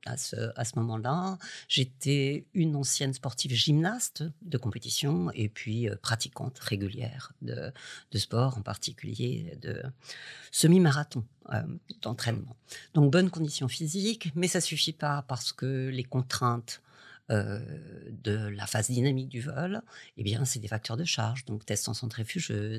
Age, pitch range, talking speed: 50-69, 120-160 Hz, 145 wpm